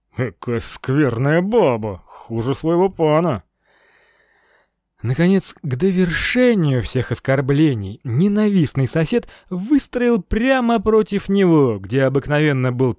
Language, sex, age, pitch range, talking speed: Russian, male, 30-49, 115-185 Hz, 90 wpm